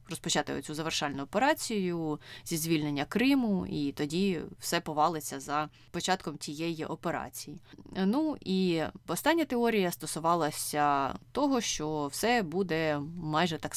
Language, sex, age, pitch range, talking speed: Ukrainian, female, 20-39, 150-180 Hz, 115 wpm